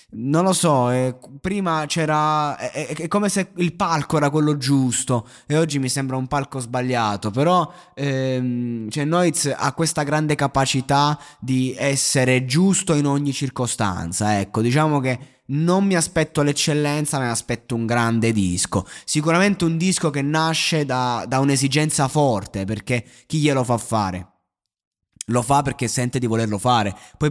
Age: 20-39